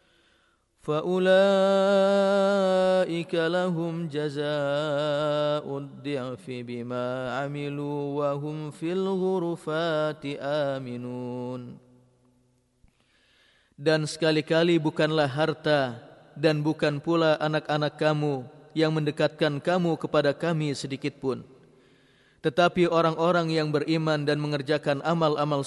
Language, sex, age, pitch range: Indonesian, male, 30-49, 135-155 Hz